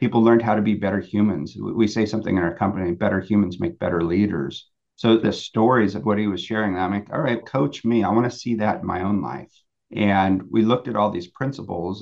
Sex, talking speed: male, 240 wpm